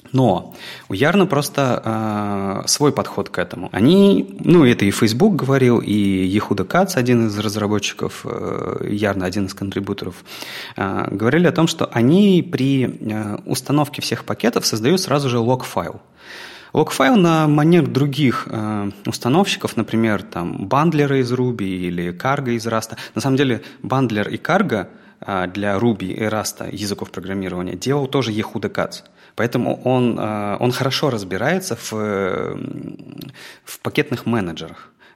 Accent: native